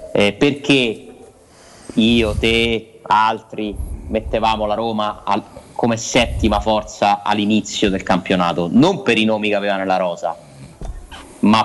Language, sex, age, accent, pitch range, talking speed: Italian, male, 30-49, native, 100-150 Hz, 125 wpm